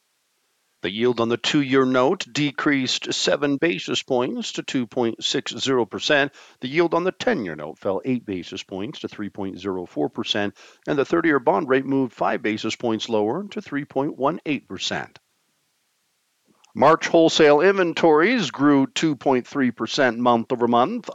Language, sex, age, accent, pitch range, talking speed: English, male, 50-69, American, 110-145 Hz, 125 wpm